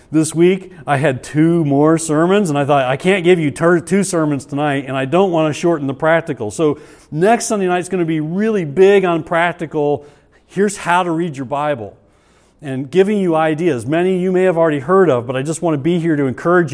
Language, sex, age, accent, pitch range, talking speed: English, male, 40-59, American, 135-175 Hz, 225 wpm